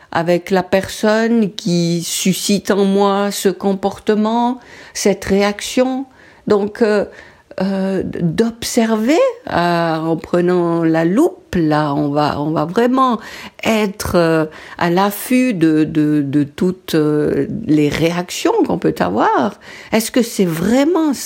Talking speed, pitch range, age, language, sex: 120 wpm, 160-225 Hz, 60-79, French, female